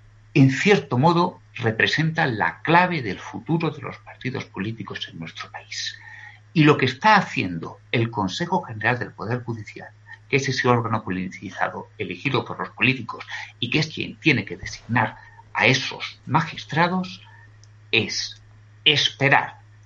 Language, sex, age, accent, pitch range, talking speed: Spanish, male, 60-79, Spanish, 105-150 Hz, 140 wpm